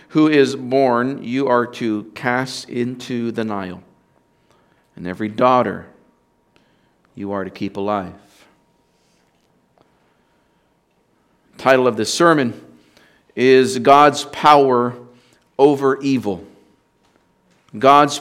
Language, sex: Russian, male